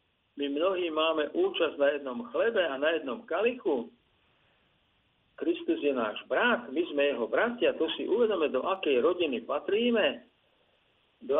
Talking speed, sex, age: 140 wpm, male, 50-69